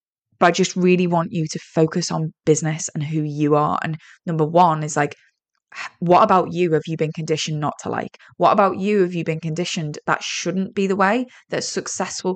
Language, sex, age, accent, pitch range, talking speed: English, female, 20-39, British, 160-200 Hz, 210 wpm